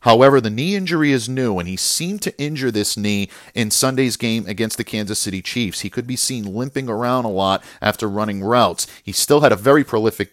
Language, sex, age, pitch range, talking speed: English, male, 40-59, 105-145 Hz, 220 wpm